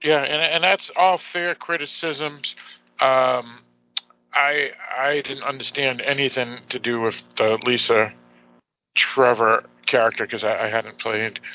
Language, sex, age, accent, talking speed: English, male, 50-69, American, 130 wpm